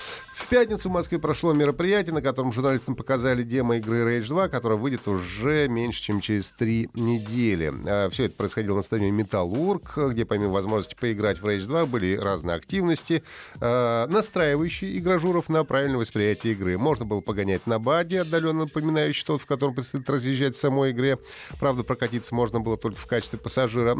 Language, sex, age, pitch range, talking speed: Russian, male, 30-49, 110-145 Hz, 170 wpm